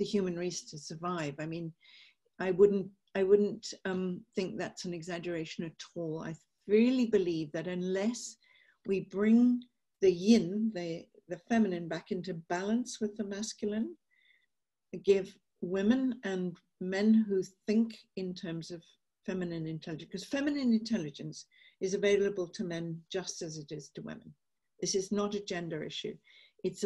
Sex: female